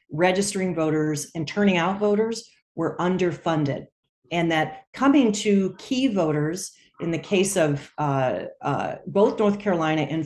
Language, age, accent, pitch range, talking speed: English, 40-59, American, 150-195 Hz, 140 wpm